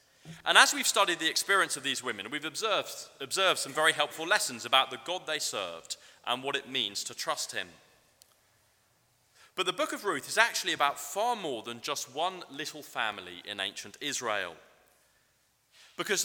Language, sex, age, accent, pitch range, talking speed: English, male, 30-49, British, 120-155 Hz, 175 wpm